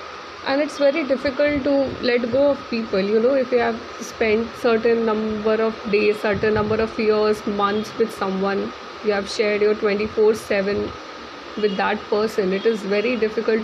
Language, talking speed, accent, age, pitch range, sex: Hindi, 165 wpm, native, 20-39, 210-245 Hz, female